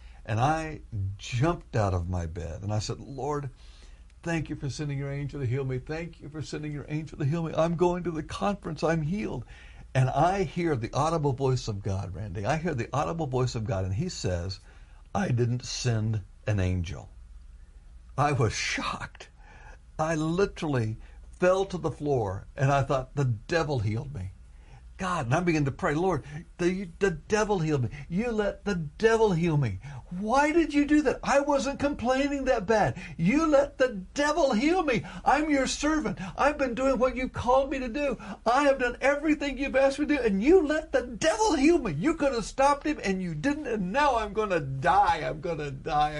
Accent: American